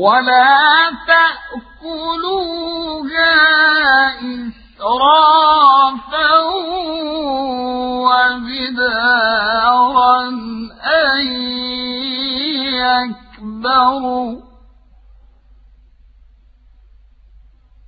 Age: 50-69